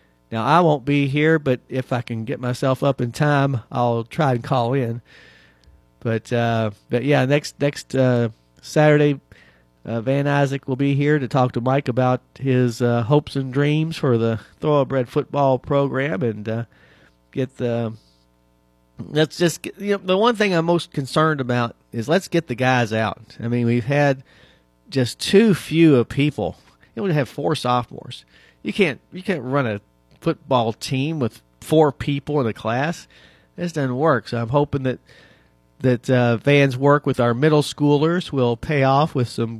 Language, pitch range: English, 115-145 Hz